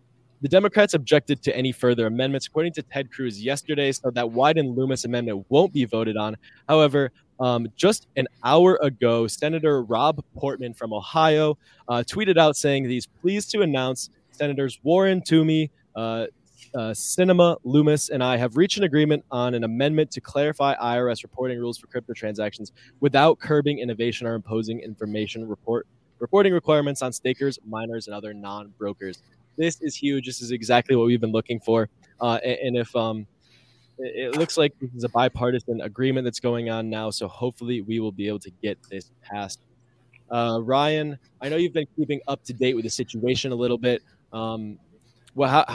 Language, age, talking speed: English, 20-39, 175 wpm